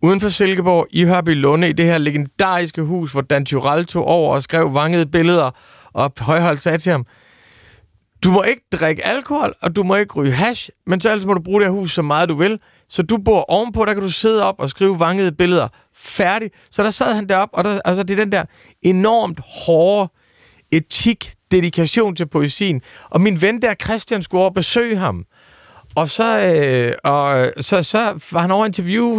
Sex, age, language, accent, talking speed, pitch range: male, 40-59, Danish, native, 205 wpm, 150-200 Hz